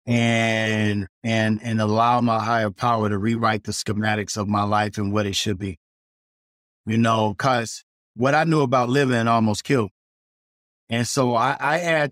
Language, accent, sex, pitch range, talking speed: English, American, male, 115-155 Hz, 170 wpm